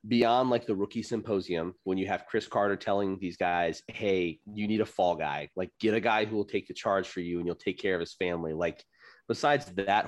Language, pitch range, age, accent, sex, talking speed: English, 90-115 Hz, 30-49, American, male, 240 wpm